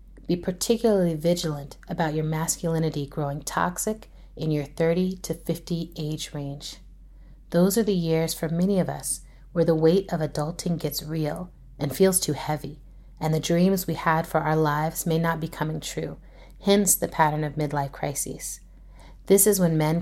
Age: 30-49